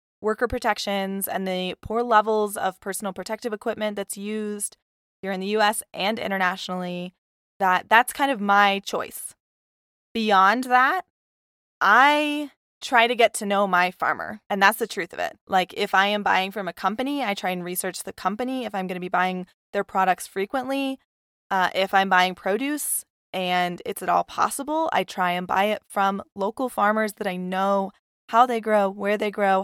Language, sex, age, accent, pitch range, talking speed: English, female, 20-39, American, 190-230 Hz, 180 wpm